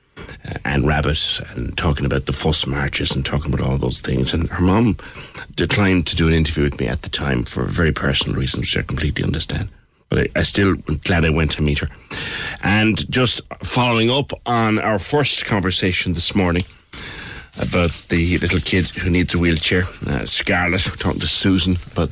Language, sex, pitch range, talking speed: English, male, 80-100 Hz, 190 wpm